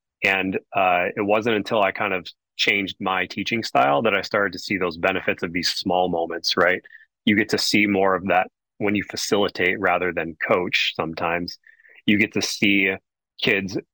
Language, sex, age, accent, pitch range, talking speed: English, male, 30-49, American, 95-105 Hz, 185 wpm